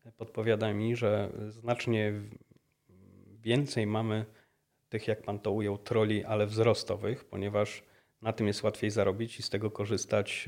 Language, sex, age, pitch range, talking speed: Polish, male, 30-49, 100-115 Hz, 135 wpm